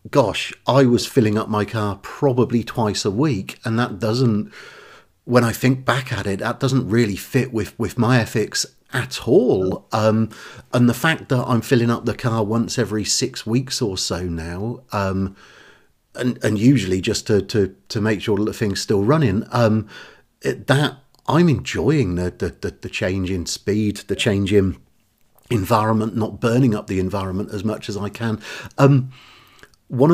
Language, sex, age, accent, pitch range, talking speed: English, male, 50-69, British, 100-120 Hz, 180 wpm